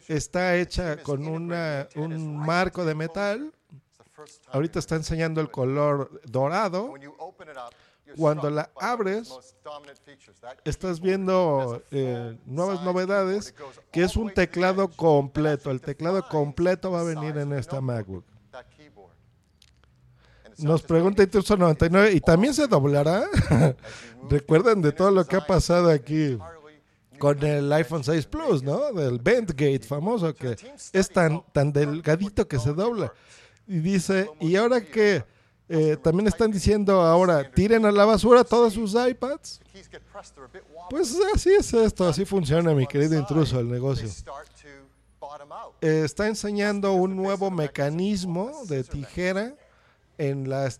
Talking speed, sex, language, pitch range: 125 wpm, male, Spanish, 145-190 Hz